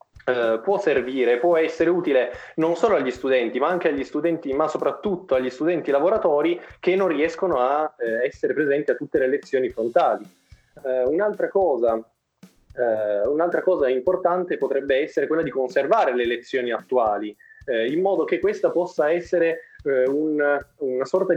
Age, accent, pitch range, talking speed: 20-39, native, 130-180 Hz, 160 wpm